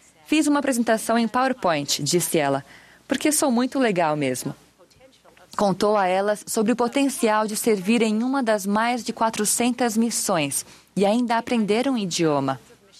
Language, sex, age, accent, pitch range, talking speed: Portuguese, female, 20-39, Brazilian, 185-230 Hz, 150 wpm